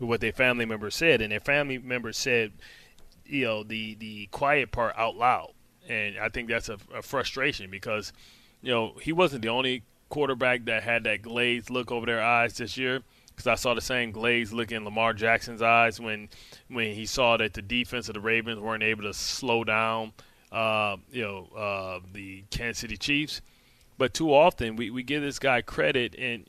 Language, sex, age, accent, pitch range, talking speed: English, male, 20-39, American, 110-130 Hz, 195 wpm